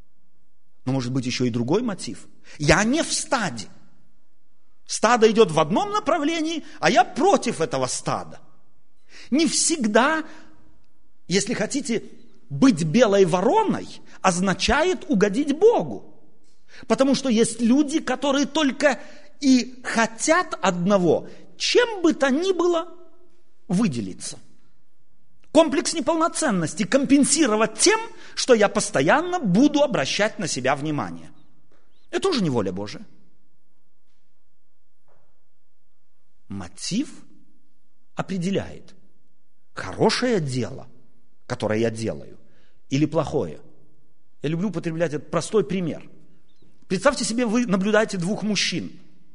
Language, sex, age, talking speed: Russian, male, 40-59, 100 wpm